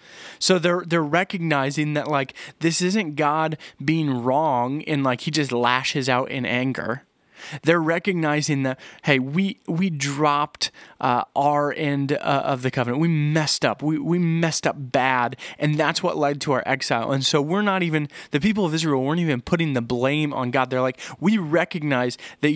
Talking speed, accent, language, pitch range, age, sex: 185 wpm, American, English, 140-170 Hz, 30-49, male